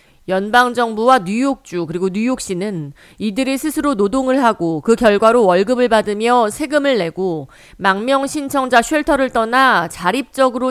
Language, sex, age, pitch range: Korean, female, 40-59, 190-255 Hz